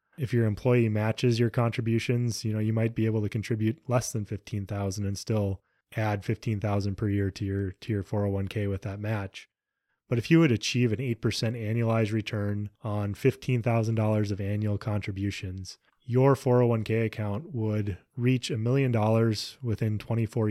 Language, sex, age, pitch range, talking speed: English, male, 20-39, 105-120 Hz, 155 wpm